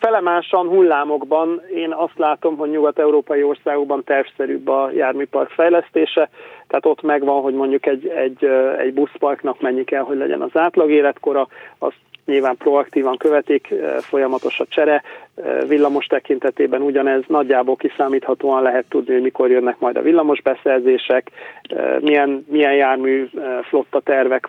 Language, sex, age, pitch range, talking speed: Hungarian, male, 40-59, 135-180 Hz, 130 wpm